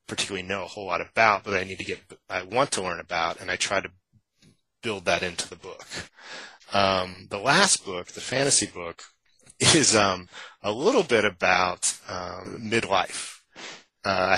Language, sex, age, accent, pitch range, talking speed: English, male, 30-49, American, 95-115 Hz, 170 wpm